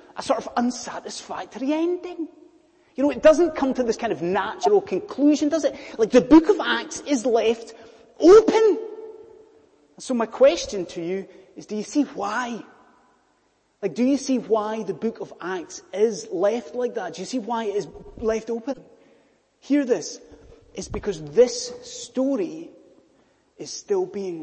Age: 30-49